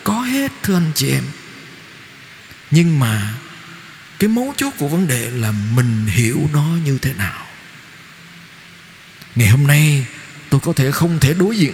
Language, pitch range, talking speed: Vietnamese, 120-165 Hz, 160 wpm